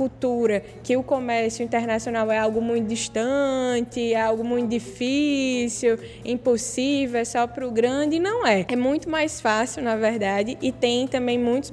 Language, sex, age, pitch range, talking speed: Portuguese, female, 10-29, 230-280 Hz, 160 wpm